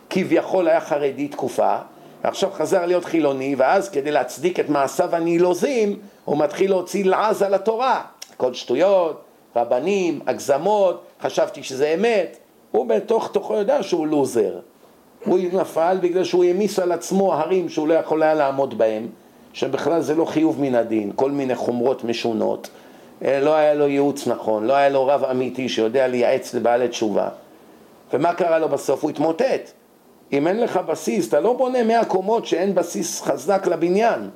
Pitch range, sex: 140-200 Hz, male